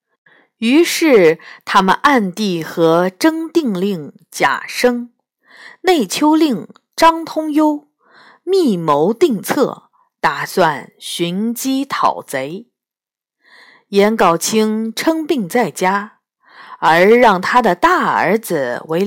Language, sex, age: Chinese, female, 50-69